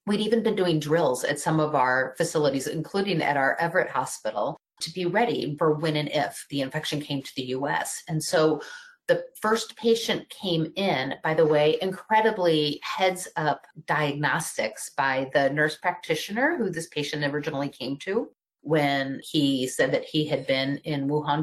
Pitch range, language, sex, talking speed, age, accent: 145-180 Hz, English, female, 170 wpm, 30-49, American